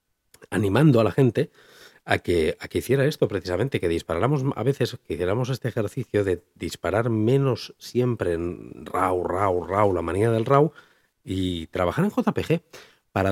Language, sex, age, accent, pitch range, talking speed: Spanish, male, 40-59, Spanish, 95-135 Hz, 160 wpm